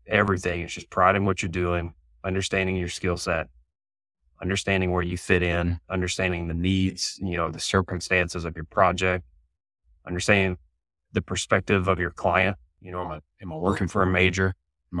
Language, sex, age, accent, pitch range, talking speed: English, male, 20-39, American, 85-95 Hz, 175 wpm